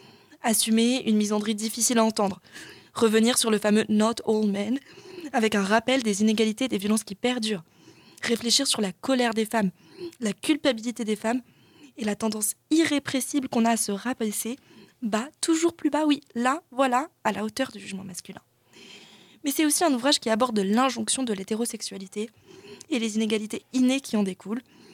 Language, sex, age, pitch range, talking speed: French, female, 20-39, 210-265 Hz, 180 wpm